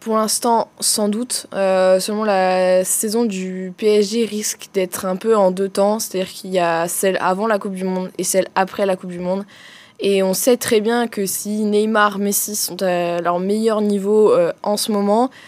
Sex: female